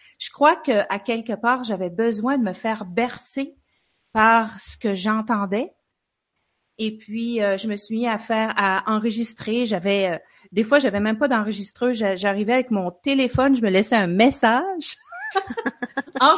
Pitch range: 210-255 Hz